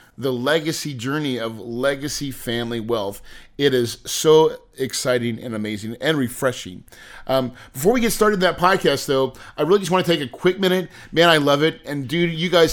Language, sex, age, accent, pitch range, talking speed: English, male, 30-49, American, 125-170 Hz, 190 wpm